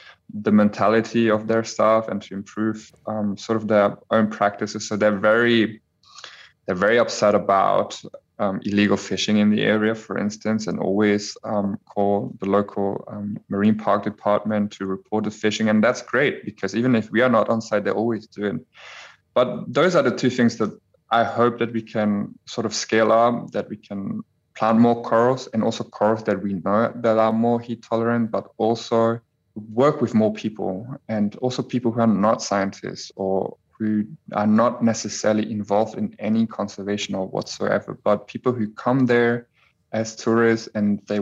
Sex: male